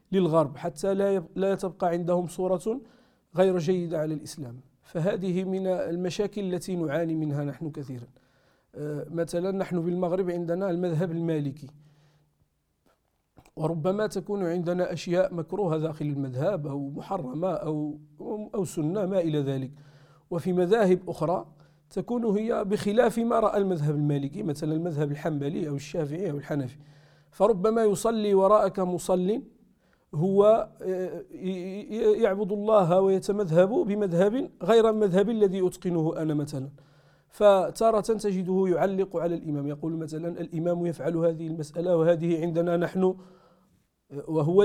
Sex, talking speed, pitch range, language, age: male, 115 wpm, 155-195 Hz, Arabic, 50-69